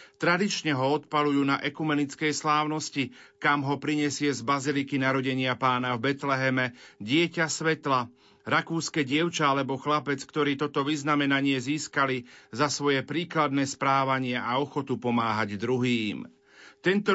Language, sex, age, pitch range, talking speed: Slovak, male, 40-59, 135-150 Hz, 120 wpm